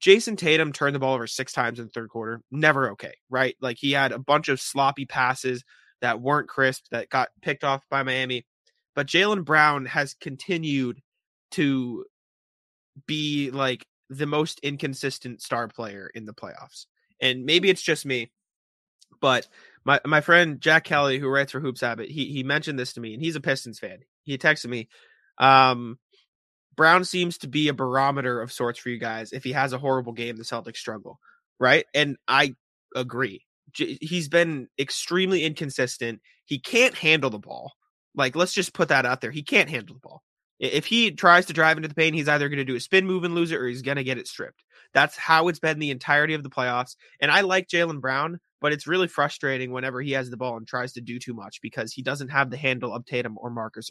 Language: English